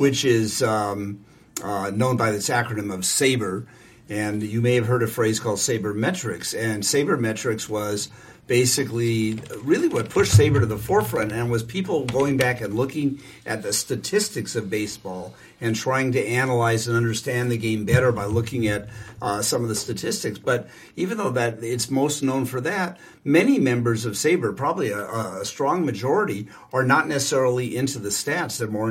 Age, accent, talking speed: 50-69, American, 180 wpm